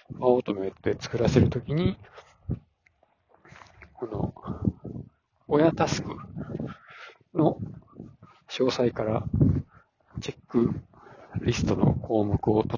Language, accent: Japanese, native